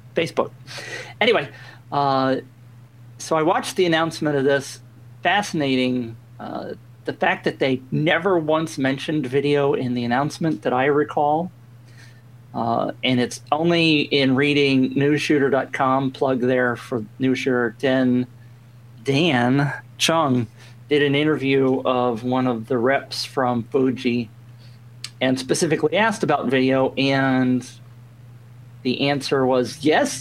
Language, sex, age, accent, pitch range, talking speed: English, male, 40-59, American, 120-140 Hz, 115 wpm